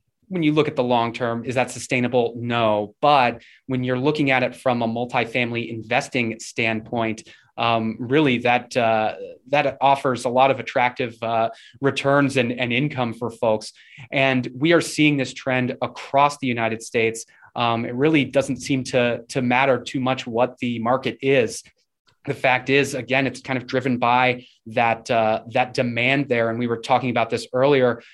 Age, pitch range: 20-39, 115-135 Hz